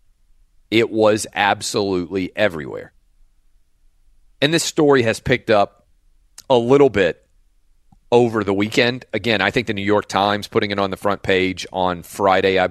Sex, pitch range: male, 95-115 Hz